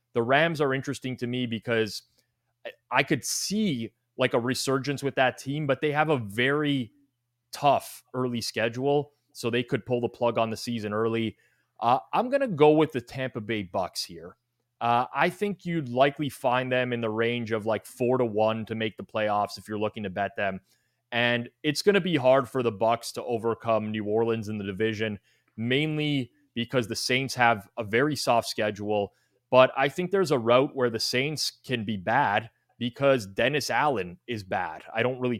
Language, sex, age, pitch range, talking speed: English, male, 20-39, 110-135 Hz, 195 wpm